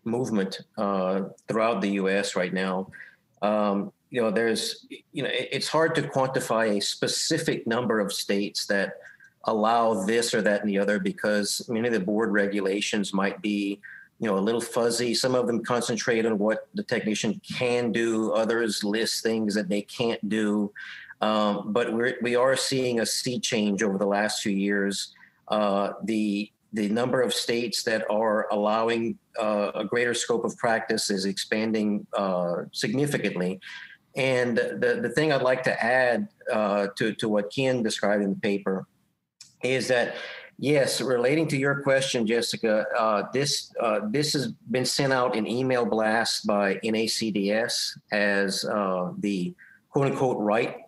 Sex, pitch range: male, 100-120 Hz